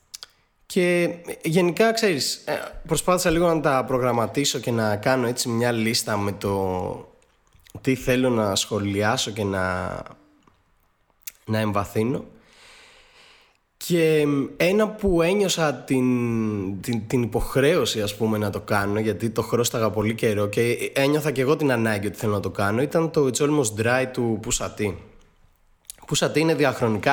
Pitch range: 105-140 Hz